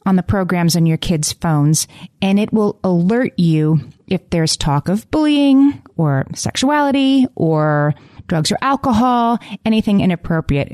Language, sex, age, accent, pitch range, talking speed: English, female, 30-49, American, 155-190 Hz, 140 wpm